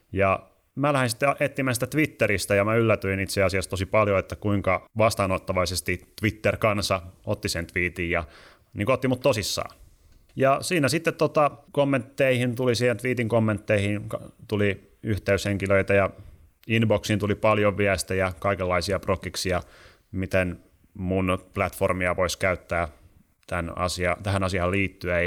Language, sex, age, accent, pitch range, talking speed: Finnish, male, 30-49, native, 95-115 Hz, 135 wpm